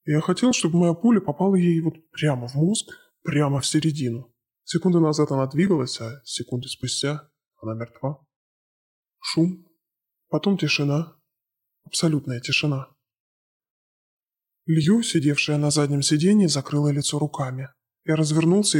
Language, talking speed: Russian, 120 wpm